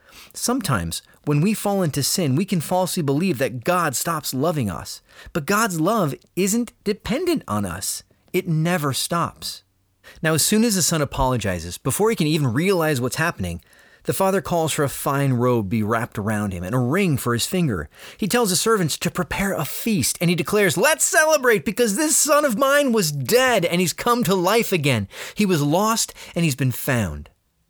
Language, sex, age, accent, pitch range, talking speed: English, male, 30-49, American, 120-185 Hz, 195 wpm